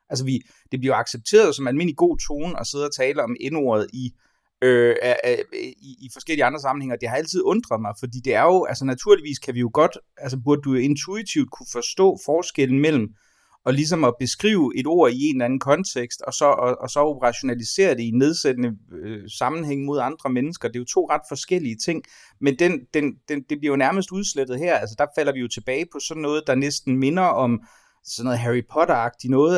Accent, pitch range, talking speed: native, 125-155 Hz, 220 wpm